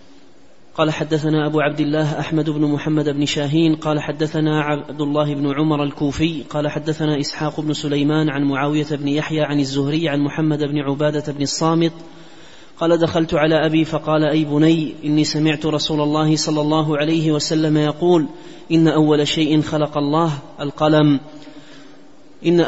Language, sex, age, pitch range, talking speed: Arabic, male, 30-49, 150-155 Hz, 150 wpm